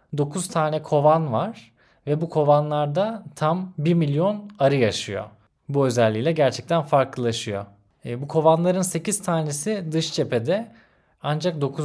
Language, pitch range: Turkish, 120-160 Hz